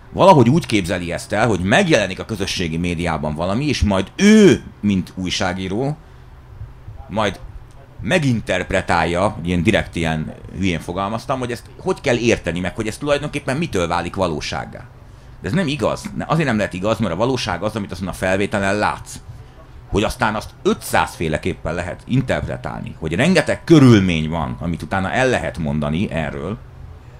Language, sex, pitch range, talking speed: Hungarian, male, 90-120 Hz, 150 wpm